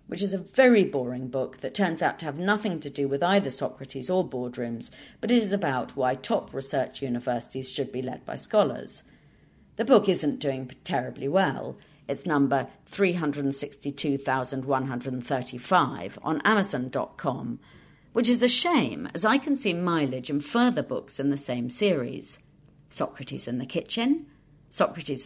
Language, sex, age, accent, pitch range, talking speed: English, female, 40-59, British, 135-205 Hz, 150 wpm